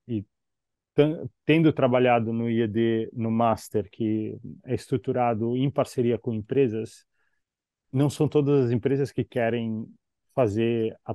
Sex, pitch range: male, 110-135 Hz